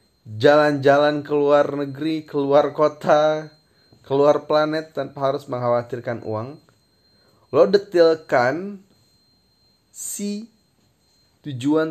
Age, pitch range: 20-39, 110-150 Hz